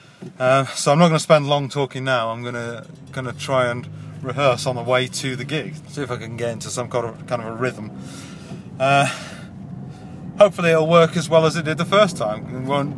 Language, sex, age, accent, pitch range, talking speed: English, male, 30-49, British, 145-180 Hz, 230 wpm